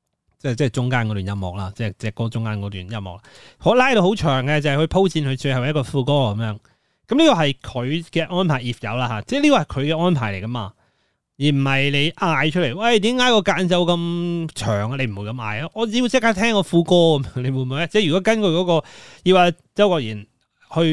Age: 30-49